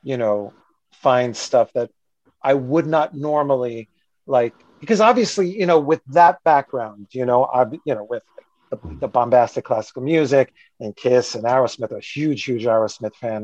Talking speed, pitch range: 165 wpm, 120-160 Hz